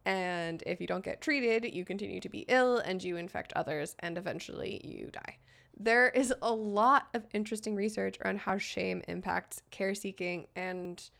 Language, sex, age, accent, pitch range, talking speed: English, female, 20-39, American, 175-210 Hz, 175 wpm